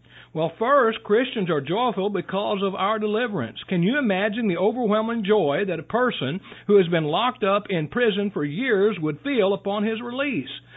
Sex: male